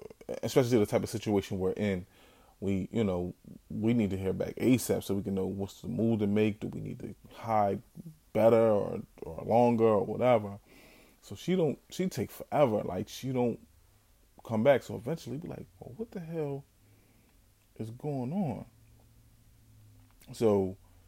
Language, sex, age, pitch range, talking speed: English, male, 20-39, 100-120 Hz, 170 wpm